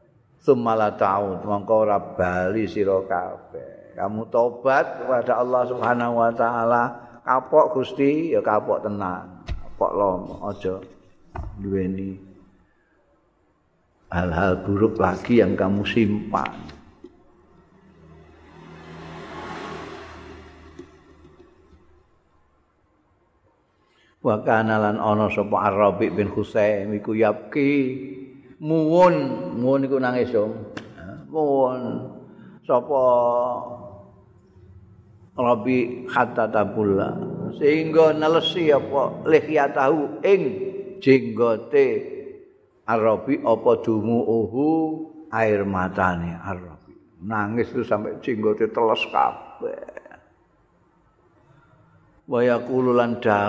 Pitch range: 100-135 Hz